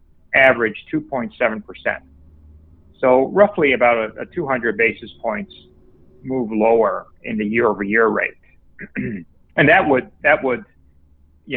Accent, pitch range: American, 85-125 Hz